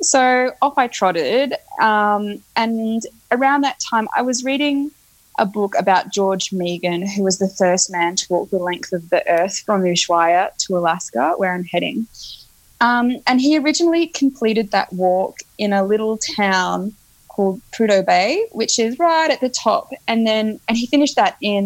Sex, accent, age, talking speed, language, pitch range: female, Australian, 20-39, 175 wpm, English, 190-260 Hz